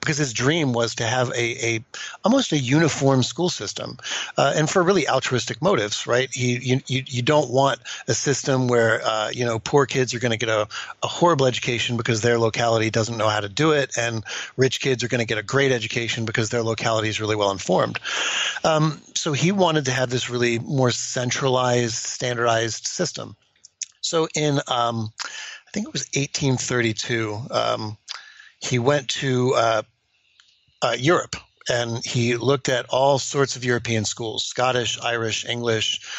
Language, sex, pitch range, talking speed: English, male, 115-135 Hz, 180 wpm